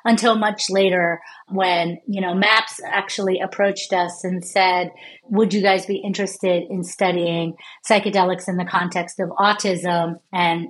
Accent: American